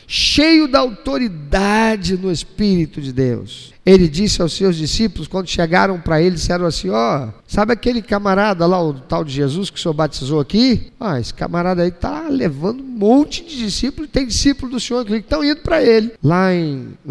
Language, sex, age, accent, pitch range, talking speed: Portuguese, male, 50-69, Brazilian, 140-210 Hz, 195 wpm